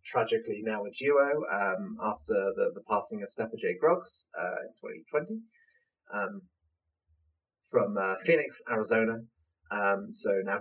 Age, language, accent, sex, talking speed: 30-49, English, British, male, 135 wpm